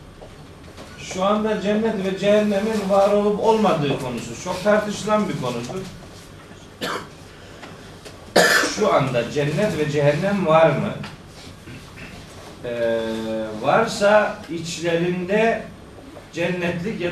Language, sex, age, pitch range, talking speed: Turkish, male, 40-59, 145-195 Hz, 90 wpm